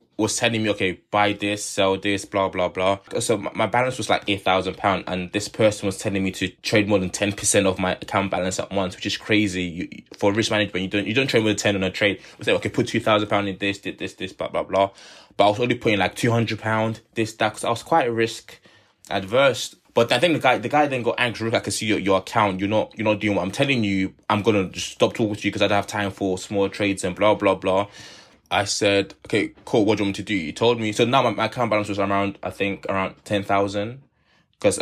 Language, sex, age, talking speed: English, male, 20-39, 270 wpm